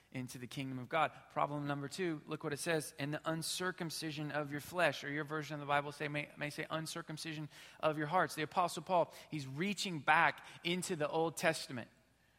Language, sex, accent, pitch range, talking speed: English, male, American, 145-170 Hz, 205 wpm